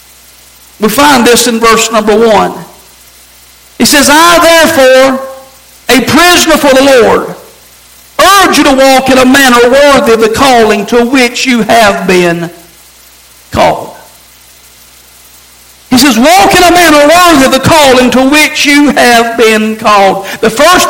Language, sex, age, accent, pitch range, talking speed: English, male, 60-79, American, 230-305 Hz, 145 wpm